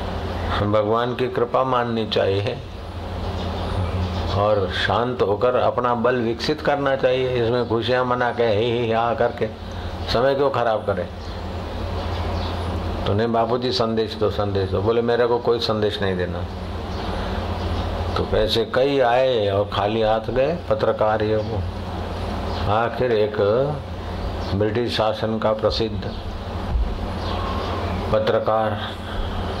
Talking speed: 110 wpm